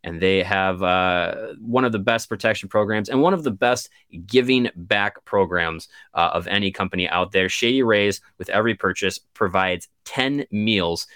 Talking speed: 170 wpm